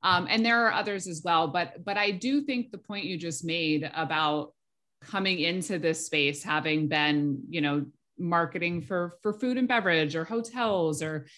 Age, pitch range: 30-49, 155-190 Hz